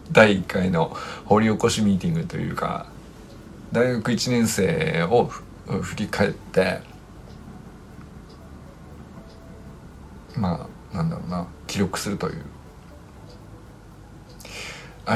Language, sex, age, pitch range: Japanese, male, 50-69, 95-165 Hz